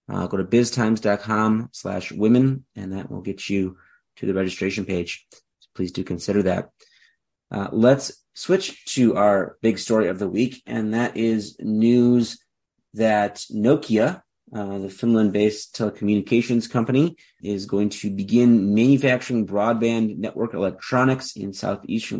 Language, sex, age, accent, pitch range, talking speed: English, male, 30-49, American, 100-120 Hz, 135 wpm